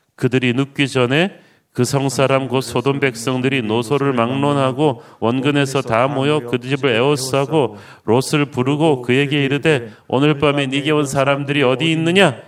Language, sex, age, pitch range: Korean, male, 40-59, 125-155 Hz